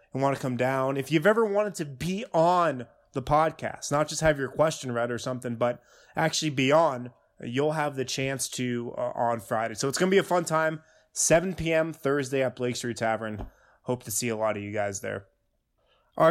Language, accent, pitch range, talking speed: English, American, 125-160 Hz, 215 wpm